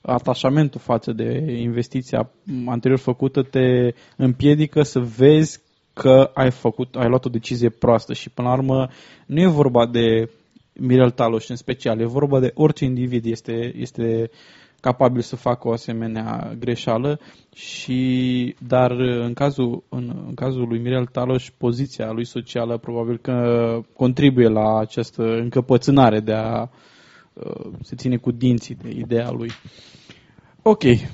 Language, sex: Romanian, male